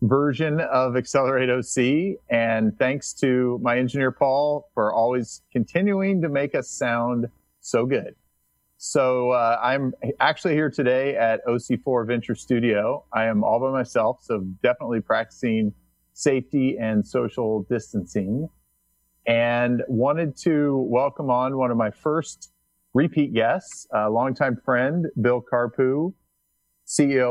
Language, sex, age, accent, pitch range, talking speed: English, male, 40-59, American, 100-130 Hz, 125 wpm